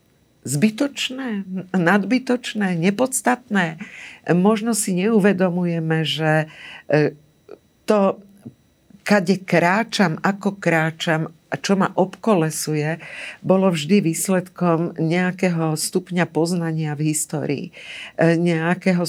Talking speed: 80 wpm